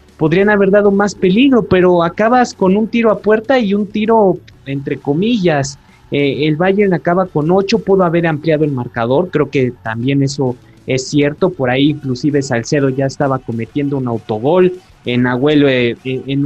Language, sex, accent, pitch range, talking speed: Spanish, male, Mexican, 130-180 Hz, 175 wpm